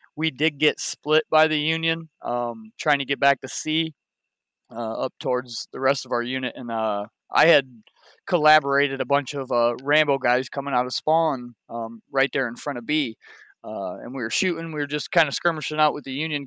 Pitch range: 125-150 Hz